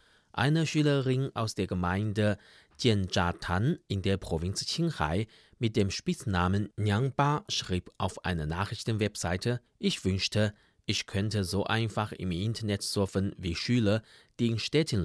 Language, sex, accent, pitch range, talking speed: German, male, German, 95-120 Hz, 130 wpm